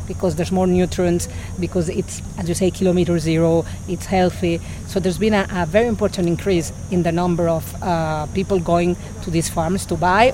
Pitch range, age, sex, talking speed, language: 170-185 Hz, 40-59, female, 190 wpm, English